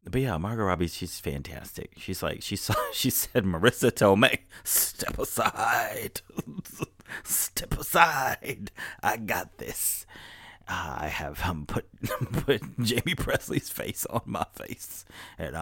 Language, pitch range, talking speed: English, 85-135 Hz, 125 wpm